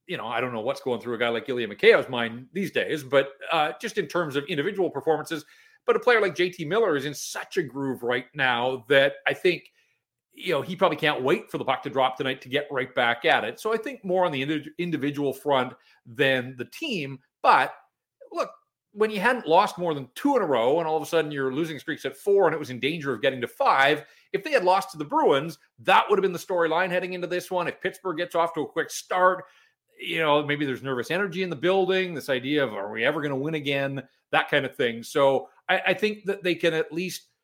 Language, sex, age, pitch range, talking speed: English, male, 40-59, 135-185 Hz, 250 wpm